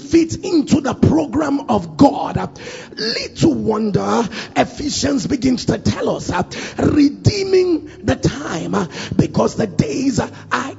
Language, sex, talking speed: English, male, 130 wpm